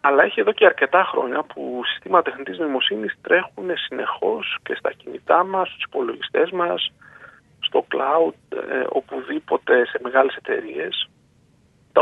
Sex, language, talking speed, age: male, Greek, 135 wpm, 40-59